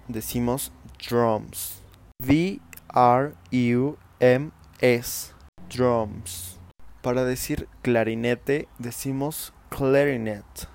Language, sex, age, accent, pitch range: English, male, 20-39, Mexican, 110-135 Hz